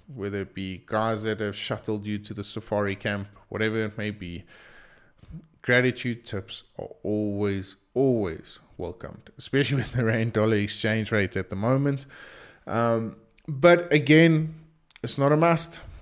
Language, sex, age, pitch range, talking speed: English, male, 20-39, 105-130 Hz, 145 wpm